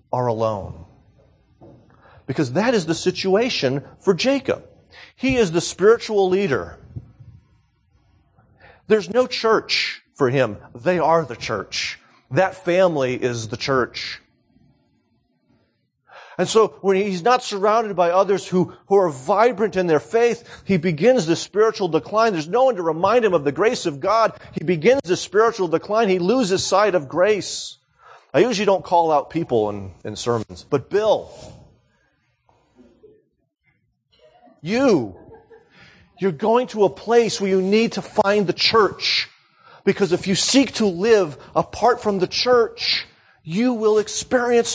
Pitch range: 150-220 Hz